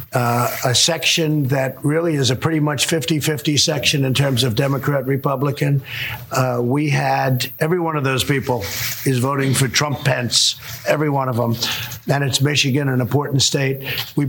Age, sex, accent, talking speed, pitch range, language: 50-69, male, American, 170 wpm, 130-150 Hz, English